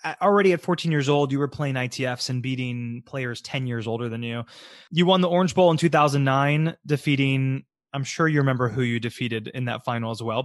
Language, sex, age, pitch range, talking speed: English, male, 20-39, 125-165 Hz, 210 wpm